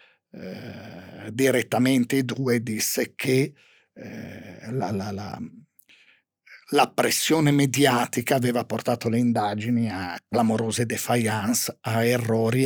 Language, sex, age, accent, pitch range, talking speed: Italian, male, 50-69, native, 120-165 Hz, 95 wpm